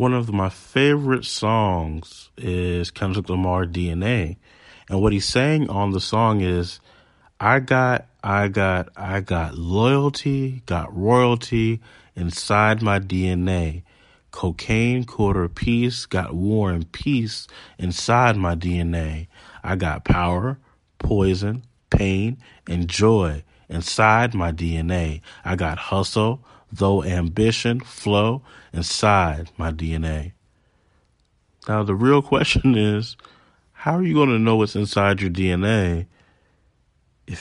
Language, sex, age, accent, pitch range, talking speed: English, male, 30-49, American, 90-115 Hz, 120 wpm